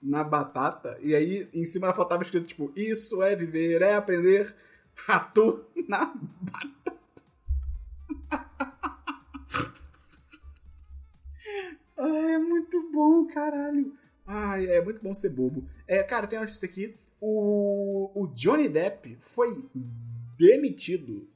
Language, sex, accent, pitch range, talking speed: Portuguese, male, Brazilian, 140-205 Hz, 115 wpm